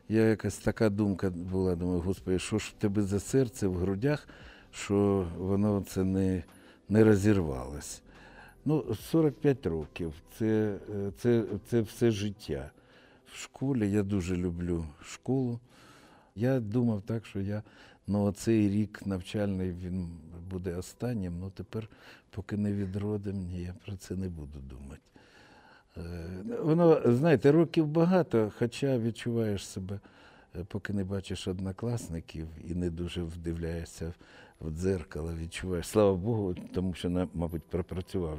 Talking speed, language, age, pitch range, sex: 125 wpm, Ukrainian, 60-79, 90-115 Hz, male